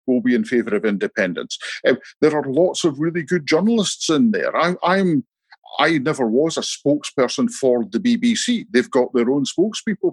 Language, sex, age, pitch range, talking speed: English, male, 50-69, 135-220 Hz, 185 wpm